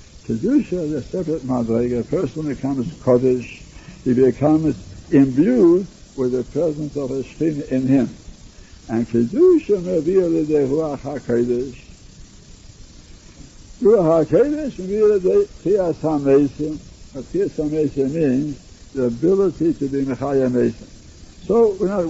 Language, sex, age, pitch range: English, male, 60-79, 135-180 Hz